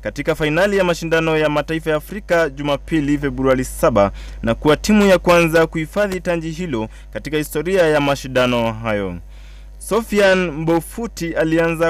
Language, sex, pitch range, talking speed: English, male, 120-175 Hz, 130 wpm